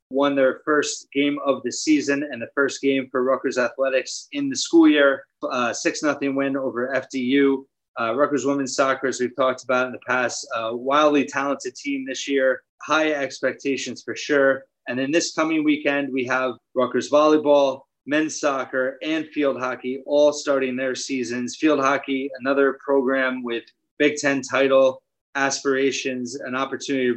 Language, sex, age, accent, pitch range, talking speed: English, male, 20-39, American, 130-140 Hz, 165 wpm